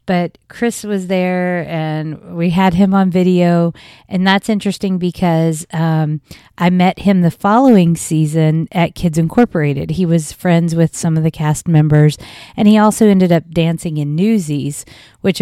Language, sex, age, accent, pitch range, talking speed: English, female, 40-59, American, 155-190 Hz, 165 wpm